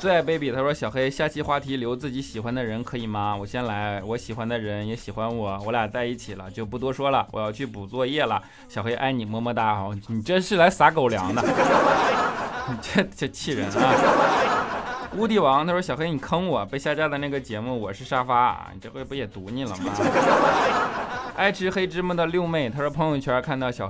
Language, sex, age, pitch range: Chinese, male, 20-39, 110-145 Hz